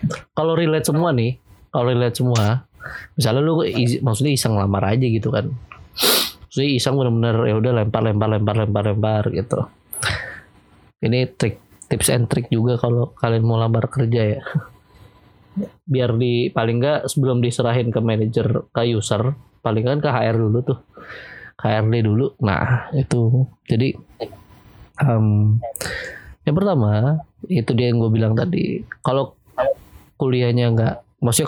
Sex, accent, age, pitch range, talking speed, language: male, native, 20-39, 110-135 Hz, 135 wpm, Indonesian